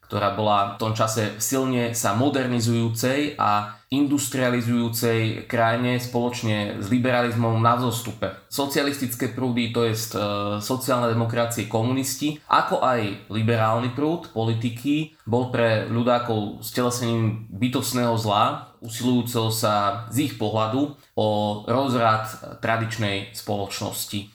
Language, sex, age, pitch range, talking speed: Slovak, male, 20-39, 110-130 Hz, 105 wpm